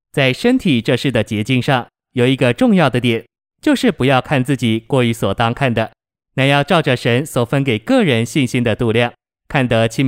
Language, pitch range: Chinese, 120-150 Hz